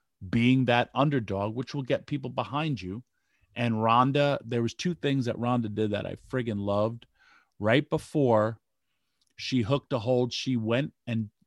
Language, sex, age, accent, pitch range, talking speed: English, male, 40-59, American, 105-130 Hz, 160 wpm